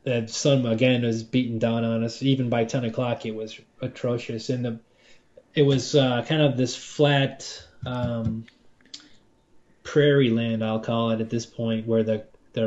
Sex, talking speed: male, 170 wpm